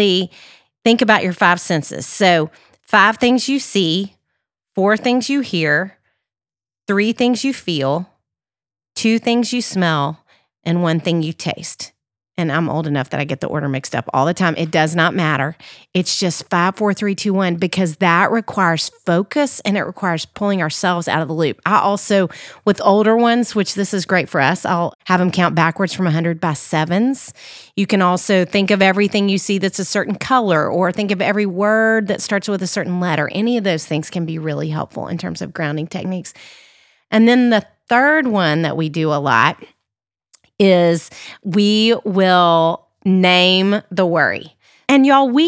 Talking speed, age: 185 wpm, 30-49